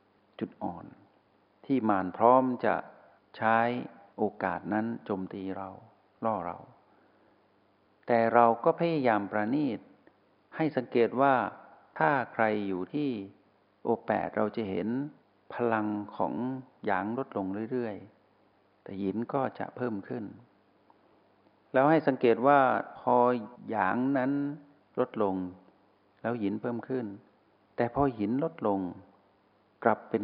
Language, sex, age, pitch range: Thai, male, 60-79, 100-125 Hz